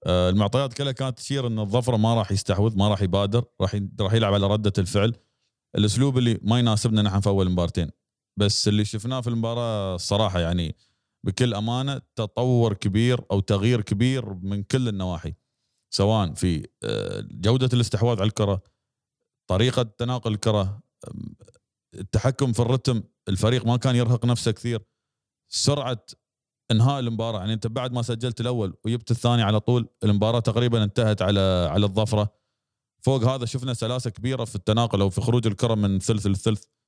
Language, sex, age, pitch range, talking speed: Arabic, male, 30-49, 100-120 Hz, 155 wpm